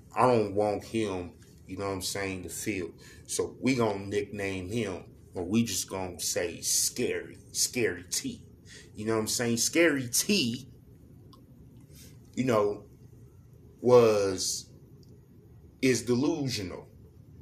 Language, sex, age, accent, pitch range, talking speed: English, male, 20-39, American, 105-135 Hz, 125 wpm